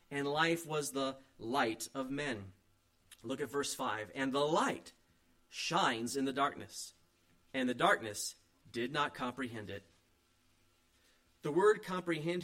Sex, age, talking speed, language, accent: male, 40-59, 135 wpm, English, American